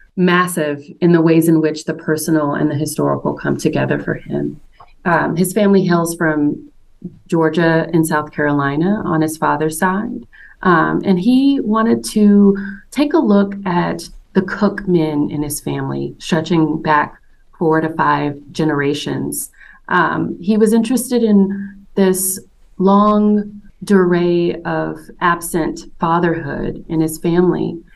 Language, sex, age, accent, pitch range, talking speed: English, female, 30-49, American, 160-200 Hz, 135 wpm